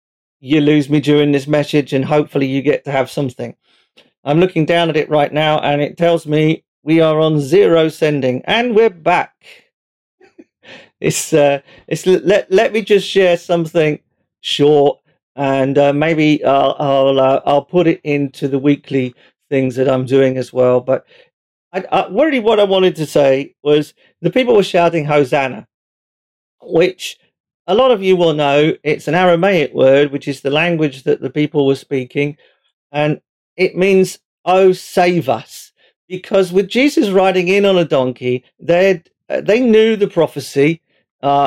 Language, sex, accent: English, male, British